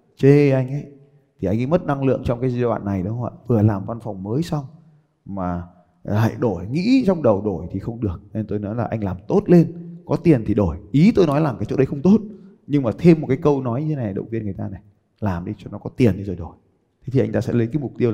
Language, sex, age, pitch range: Vietnamese, male, 20-39, 105-145 Hz